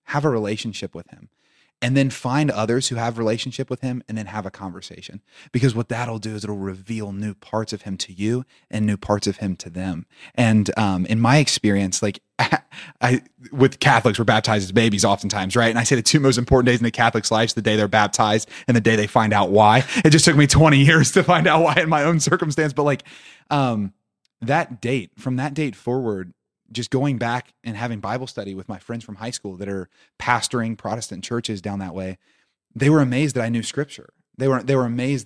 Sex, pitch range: male, 105-135 Hz